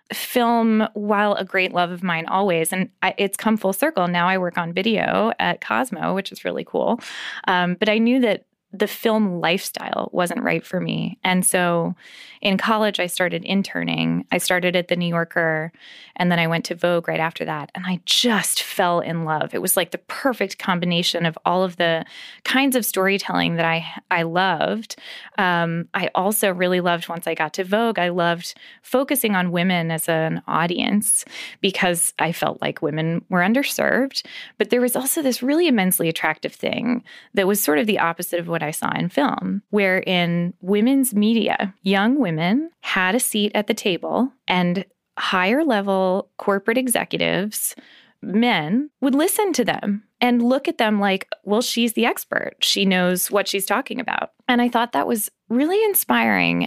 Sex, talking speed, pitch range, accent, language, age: female, 180 wpm, 175-230 Hz, American, English, 20-39